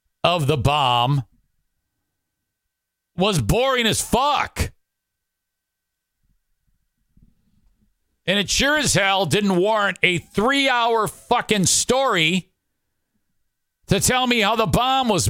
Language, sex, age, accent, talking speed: English, male, 50-69, American, 100 wpm